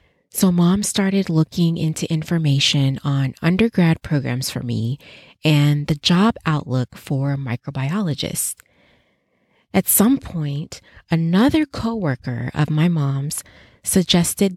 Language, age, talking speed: English, 30-49, 105 wpm